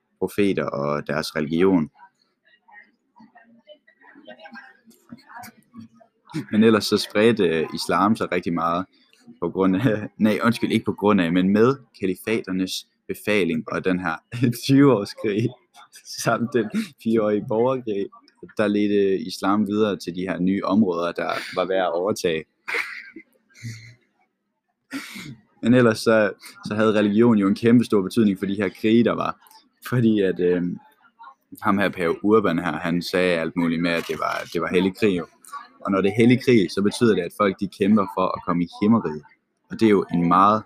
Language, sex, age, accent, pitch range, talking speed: Danish, male, 20-39, native, 90-120 Hz, 160 wpm